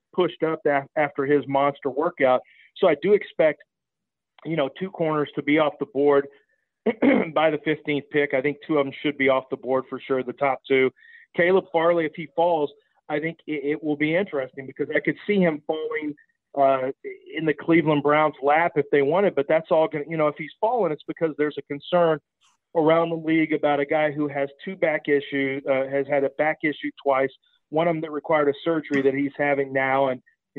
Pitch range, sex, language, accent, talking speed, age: 140-170 Hz, male, English, American, 220 wpm, 40-59